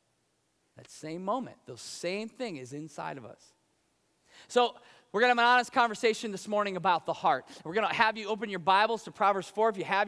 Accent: American